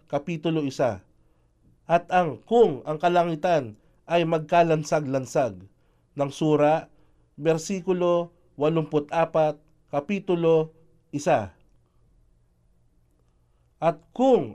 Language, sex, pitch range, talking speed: Filipino, male, 140-175 Hz, 70 wpm